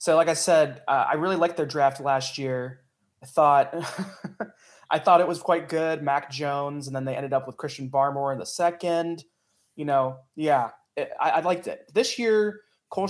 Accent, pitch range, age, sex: American, 130-155 Hz, 20-39, male